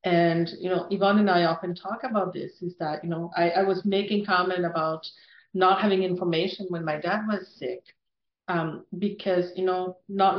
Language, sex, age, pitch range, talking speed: English, female, 40-59, 165-195 Hz, 190 wpm